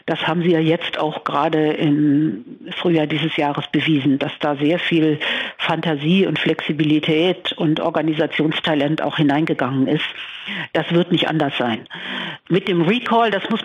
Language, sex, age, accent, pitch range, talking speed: German, female, 50-69, German, 160-190 Hz, 150 wpm